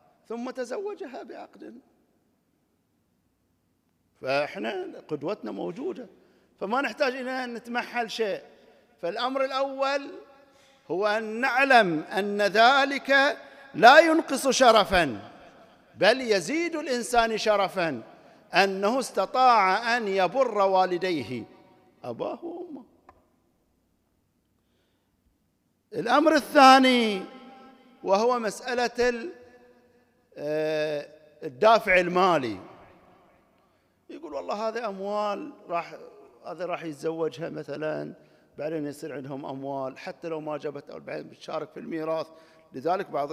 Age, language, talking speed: 50-69, Arabic, 85 wpm